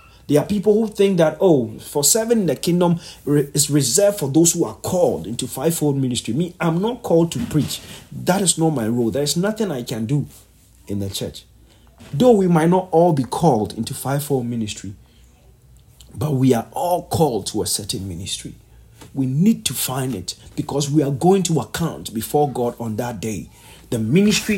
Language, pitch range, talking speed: English, 110-165 Hz, 195 wpm